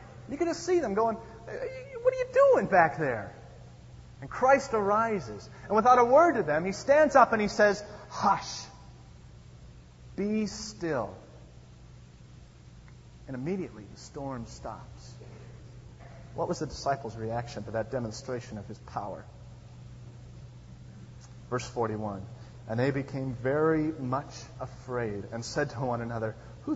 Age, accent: 30-49, American